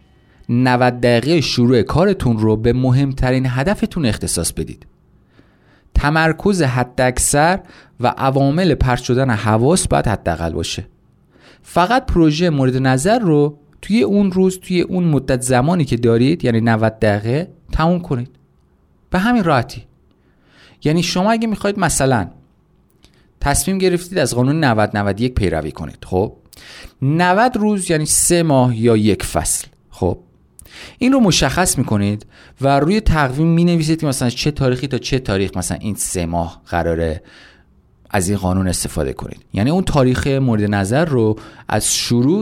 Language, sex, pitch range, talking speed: Persian, male, 110-165 Hz, 135 wpm